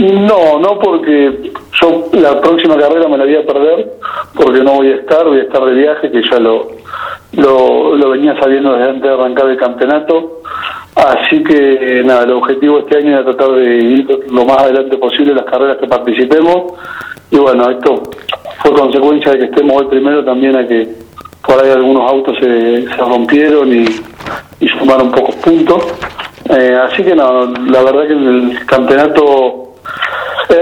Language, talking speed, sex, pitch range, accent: Spanish, 180 wpm, male, 130-160 Hz, Argentinian